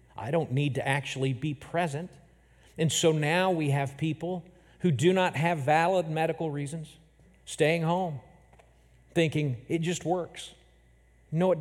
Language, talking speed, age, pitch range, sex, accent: English, 145 wpm, 50-69, 135-170 Hz, male, American